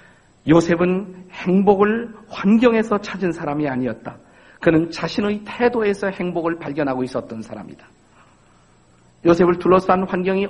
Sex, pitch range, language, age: male, 150-205 Hz, Korean, 50-69